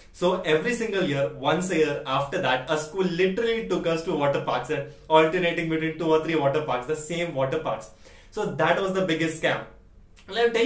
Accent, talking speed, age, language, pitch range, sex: Indian, 215 wpm, 20-39, English, 145-175 Hz, male